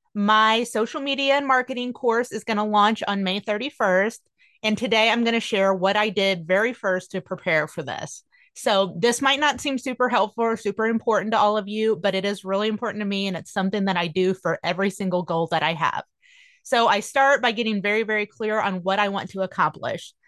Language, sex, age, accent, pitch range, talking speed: English, female, 30-49, American, 185-230 Hz, 225 wpm